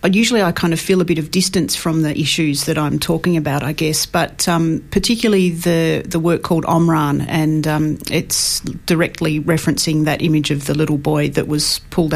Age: 40-59